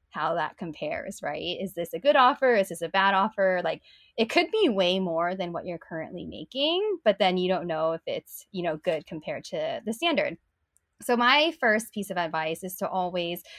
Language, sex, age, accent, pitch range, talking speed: English, female, 10-29, American, 170-225 Hz, 210 wpm